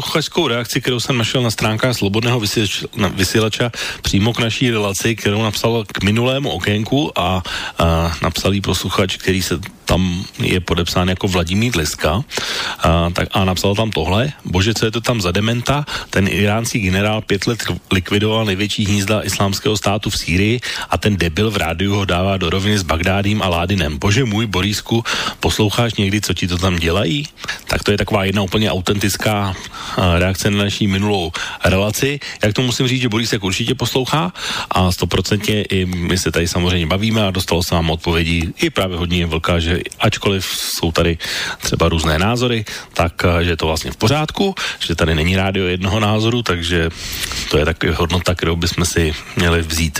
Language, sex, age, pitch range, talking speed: Slovak, male, 40-59, 90-115 Hz, 170 wpm